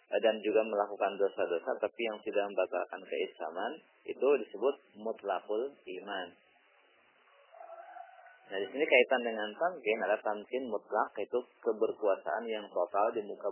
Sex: male